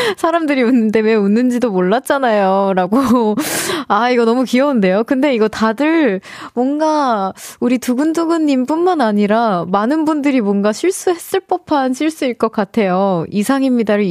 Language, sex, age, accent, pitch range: Korean, female, 20-39, native, 205-295 Hz